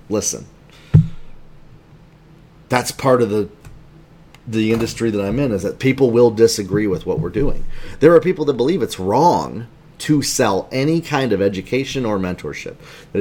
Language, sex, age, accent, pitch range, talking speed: English, male, 30-49, American, 110-155 Hz, 160 wpm